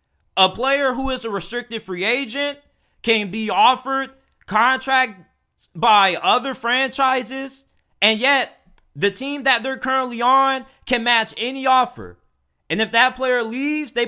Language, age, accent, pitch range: English, 20-39, American, 205-260 Hz